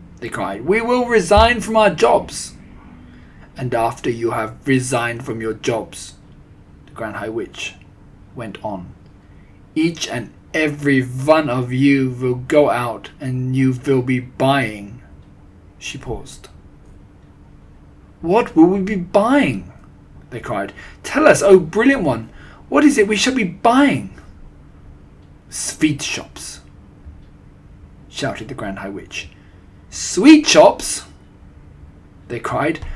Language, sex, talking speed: English, male, 125 wpm